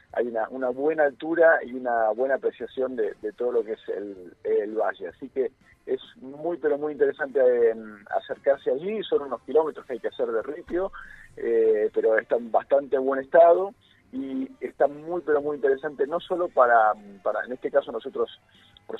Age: 40-59